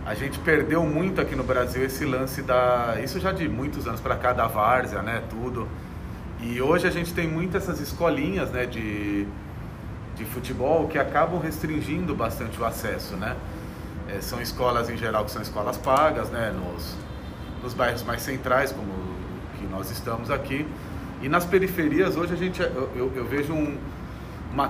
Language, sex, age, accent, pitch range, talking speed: Portuguese, male, 40-59, Brazilian, 110-150 Hz, 175 wpm